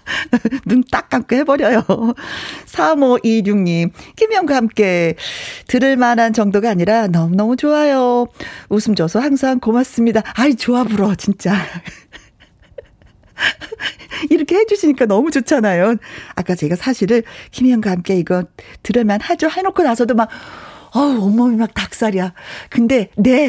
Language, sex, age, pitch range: Korean, female, 40-59, 185-265 Hz